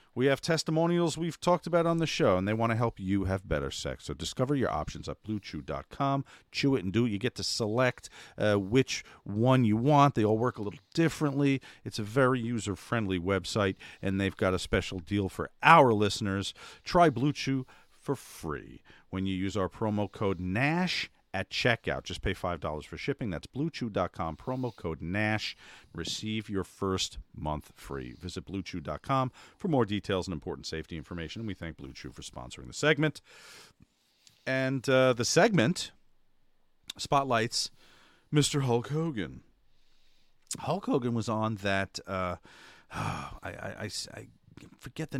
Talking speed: 160 wpm